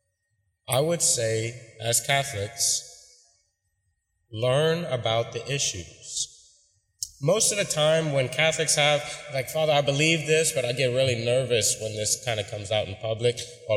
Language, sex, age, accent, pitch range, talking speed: English, male, 20-39, American, 110-140 Hz, 155 wpm